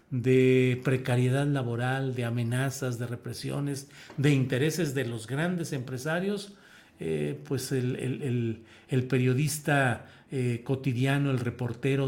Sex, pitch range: male, 120-150 Hz